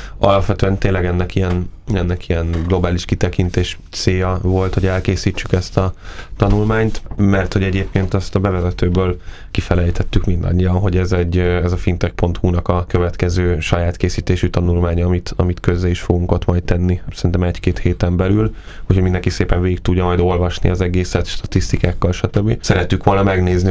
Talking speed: 150 wpm